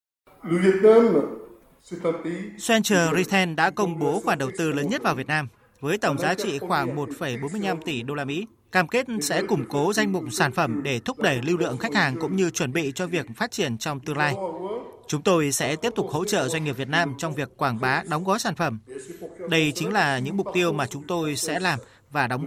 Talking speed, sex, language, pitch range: 220 wpm, male, Vietnamese, 145-190 Hz